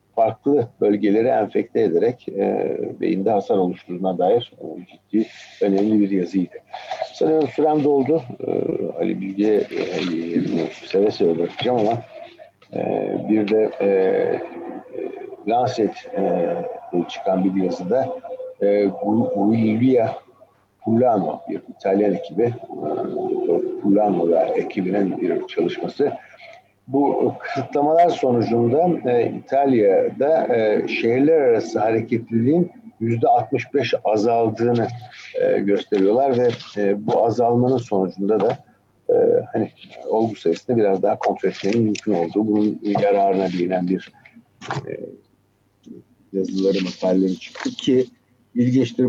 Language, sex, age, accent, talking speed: Turkish, male, 60-79, native, 100 wpm